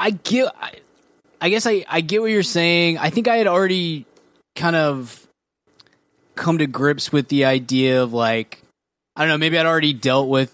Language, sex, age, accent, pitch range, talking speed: English, male, 20-39, American, 120-155 Hz, 195 wpm